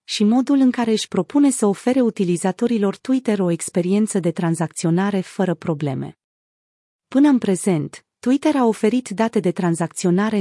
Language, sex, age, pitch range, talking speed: Romanian, female, 30-49, 180-230 Hz, 145 wpm